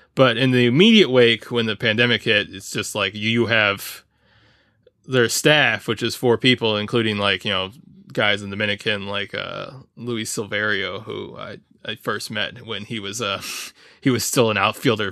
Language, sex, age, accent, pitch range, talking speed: English, male, 20-39, American, 100-125 Hz, 180 wpm